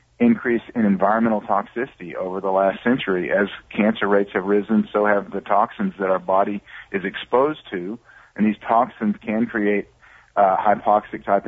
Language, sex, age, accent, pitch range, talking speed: English, male, 40-59, American, 95-110 Hz, 155 wpm